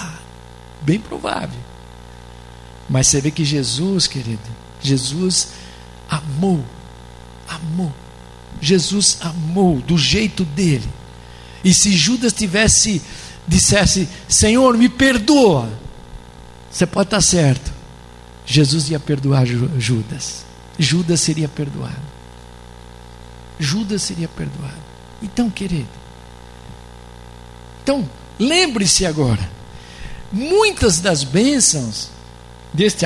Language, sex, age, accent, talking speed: Portuguese, male, 60-79, Brazilian, 85 wpm